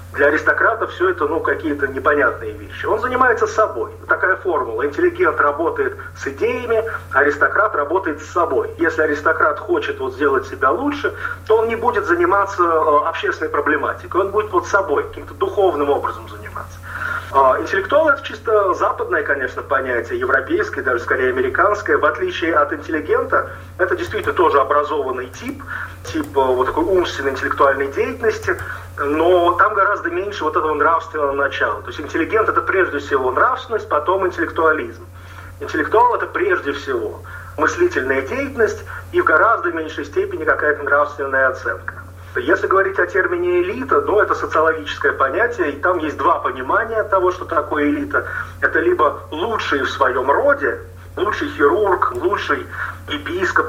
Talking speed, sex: 140 wpm, male